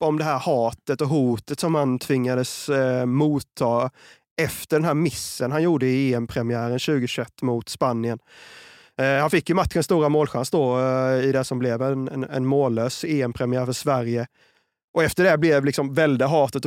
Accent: native